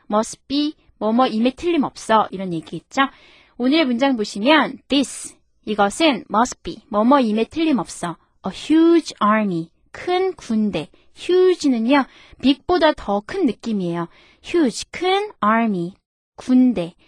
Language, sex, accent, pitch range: Korean, female, native, 200-290 Hz